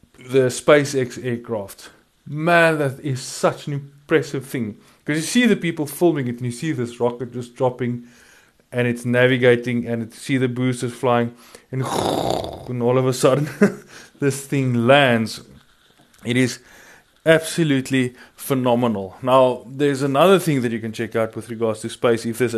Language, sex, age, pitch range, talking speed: English, male, 20-39, 120-140 Hz, 160 wpm